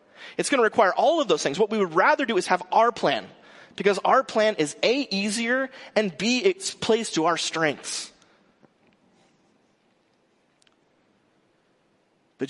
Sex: male